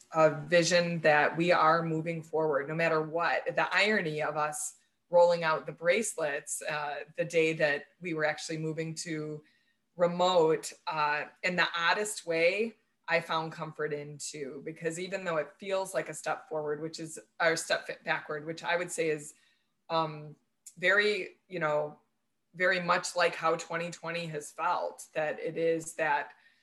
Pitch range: 155-170 Hz